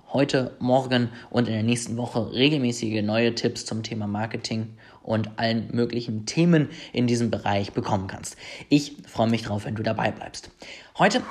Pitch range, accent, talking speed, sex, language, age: 115-150 Hz, German, 165 wpm, male, German, 30-49